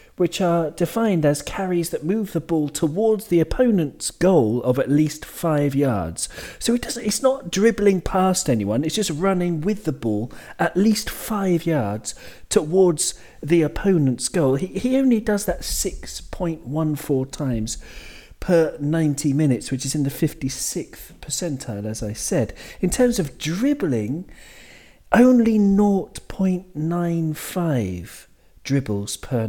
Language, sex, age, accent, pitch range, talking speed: English, male, 40-59, British, 130-185 Hz, 135 wpm